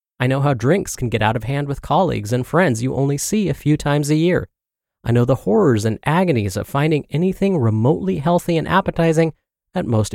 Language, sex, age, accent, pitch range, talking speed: English, male, 30-49, American, 115-165 Hz, 215 wpm